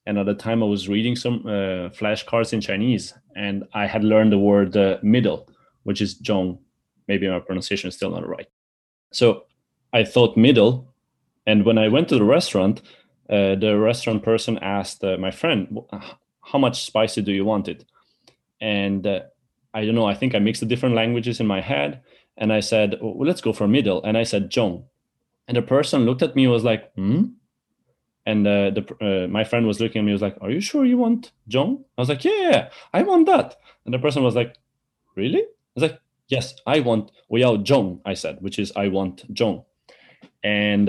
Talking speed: 210 wpm